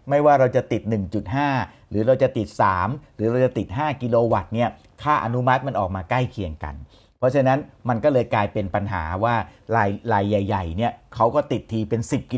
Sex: male